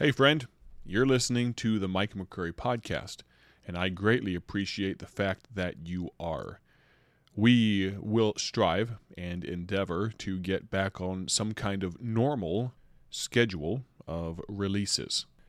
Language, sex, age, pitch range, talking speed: English, male, 30-49, 85-105 Hz, 130 wpm